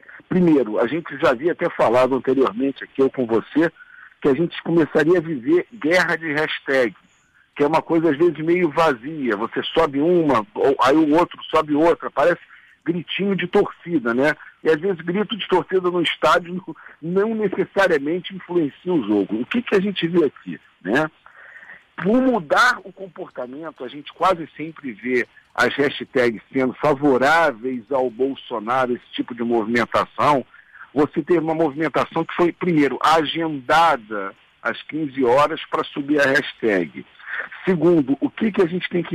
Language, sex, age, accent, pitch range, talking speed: Portuguese, male, 60-79, Brazilian, 150-185 Hz, 160 wpm